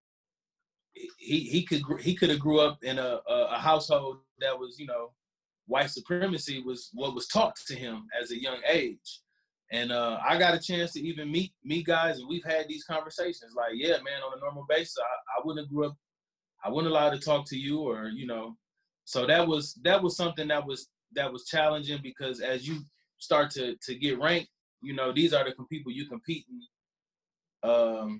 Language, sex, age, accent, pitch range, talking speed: English, male, 20-39, American, 130-165 Hz, 205 wpm